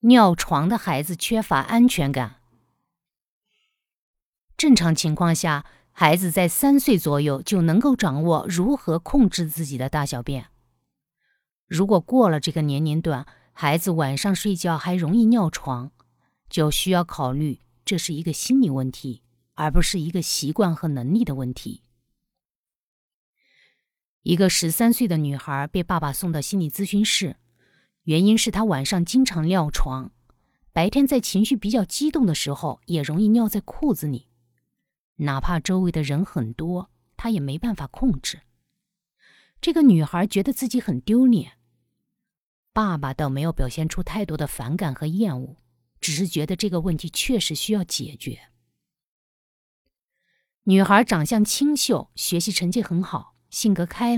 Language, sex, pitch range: Chinese, female, 140-205 Hz